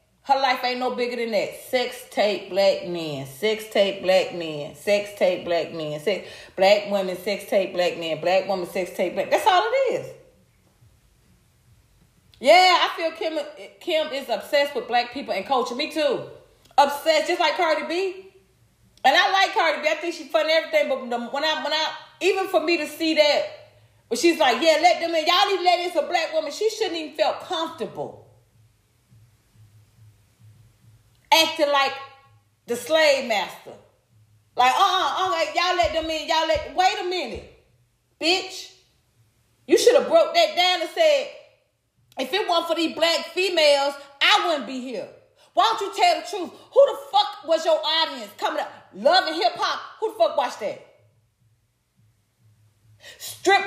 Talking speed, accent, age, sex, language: 175 wpm, American, 30-49, female, English